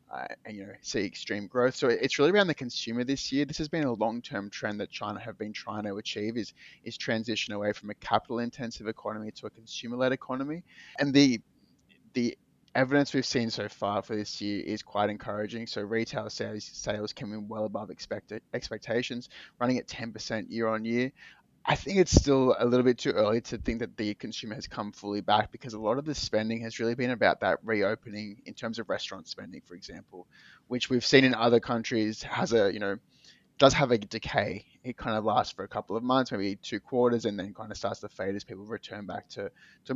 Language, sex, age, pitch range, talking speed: English, male, 20-39, 105-125 Hz, 220 wpm